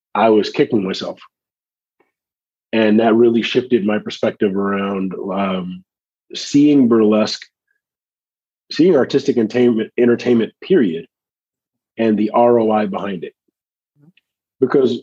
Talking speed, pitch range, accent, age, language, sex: 100 wpm, 100-115 Hz, American, 30-49, English, male